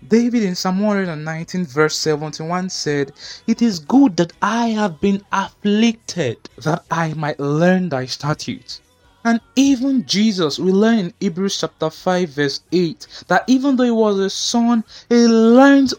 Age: 20-39